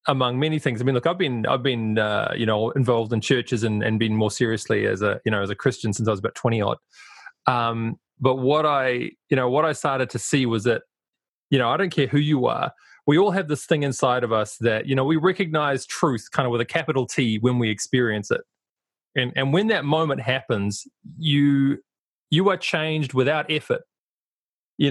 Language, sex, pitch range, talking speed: English, male, 125-160 Hz, 220 wpm